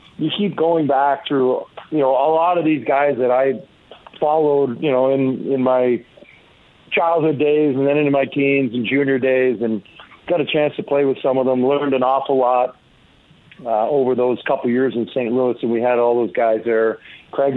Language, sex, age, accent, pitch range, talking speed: English, male, 40-59, American, 125-145 Hz, 210 wpm